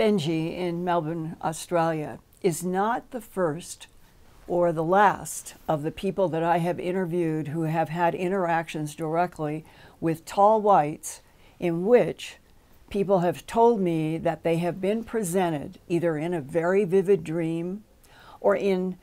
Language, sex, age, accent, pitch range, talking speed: English, female, 60-79, American, 165-195 Hz, 140 wpm